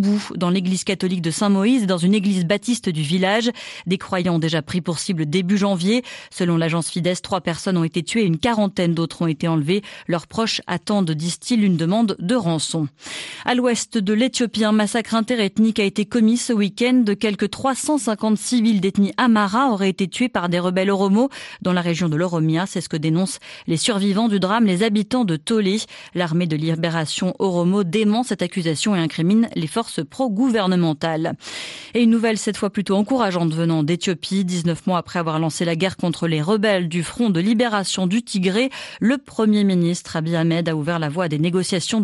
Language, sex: French, female